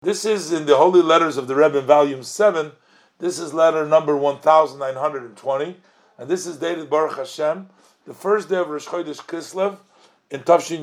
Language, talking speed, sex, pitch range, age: English, 170 wpm, male, 150-195 Hz, 50-69